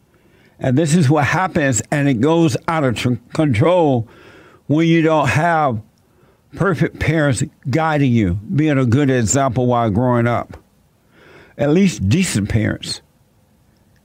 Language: English